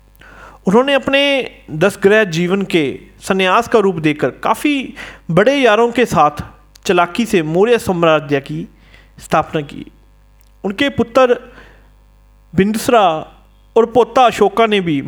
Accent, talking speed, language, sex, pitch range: native, 115 wpm, Hindi, male, 165-240 Hz